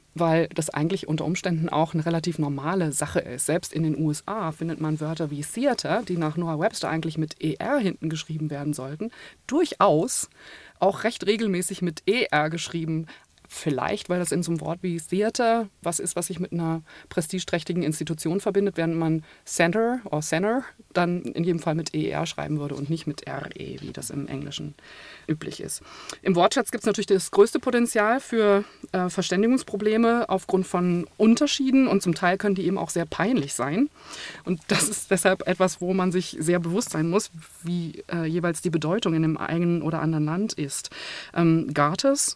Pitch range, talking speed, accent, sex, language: 165-205 Hz, 180 wpm, German, female, German